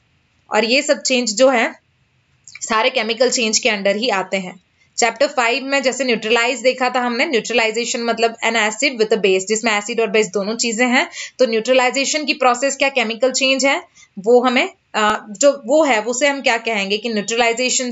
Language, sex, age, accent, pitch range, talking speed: English, female, 20-39, Indian, 215-255 Hz, 190 wpm